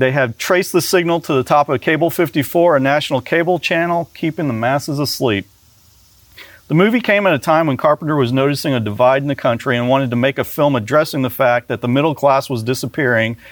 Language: English